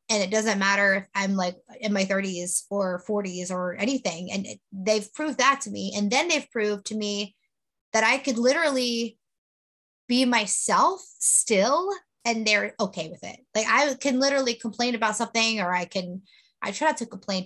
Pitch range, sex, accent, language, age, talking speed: 195-250 Hz, female, American, English, 20-39, 180 wpm